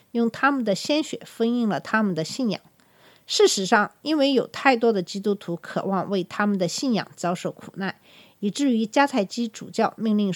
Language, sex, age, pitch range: Chinese, female, 50-69, 190-255 Hz